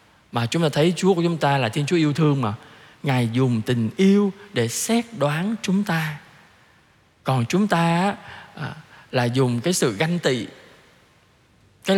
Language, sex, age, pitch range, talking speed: Vietnamese, male, 20-39, 140-200 Hz, 165 wpm